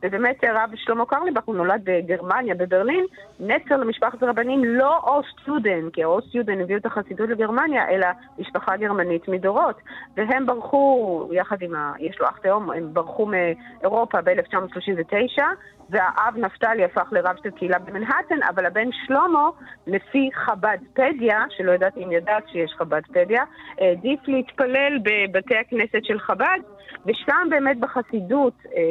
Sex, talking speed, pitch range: female, 135 wpm, 180-255 Hz